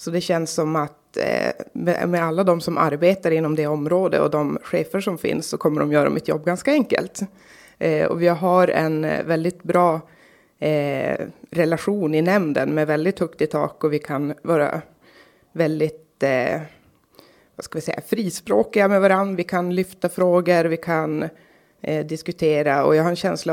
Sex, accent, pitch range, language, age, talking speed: female, native, 155-180 Hz, Swedish, 20-39, 165 wpm